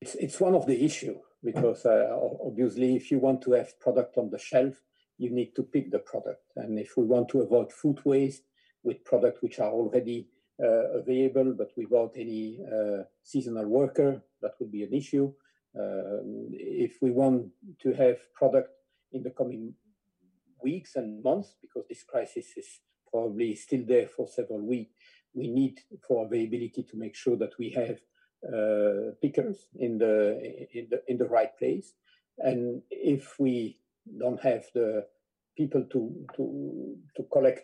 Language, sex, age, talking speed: English, male, 50-69, 165 wpm